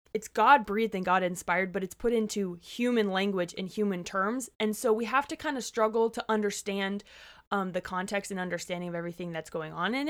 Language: English